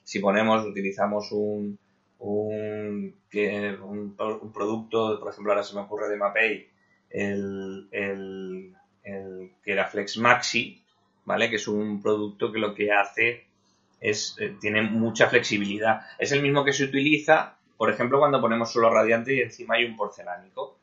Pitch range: 105-130 Hz